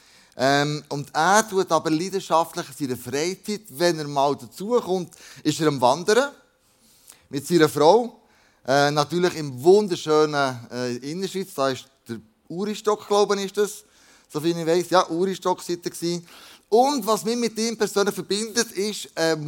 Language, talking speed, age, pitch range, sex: German, 155 wpm, 20-39, 145-205 Hz, male